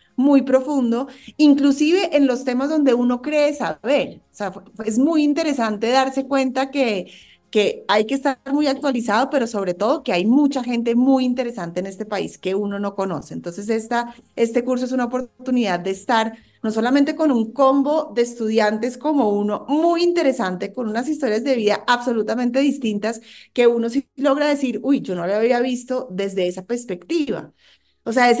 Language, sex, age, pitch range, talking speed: Spanish, female, 30-49, 215-275 Hz, 175 wpm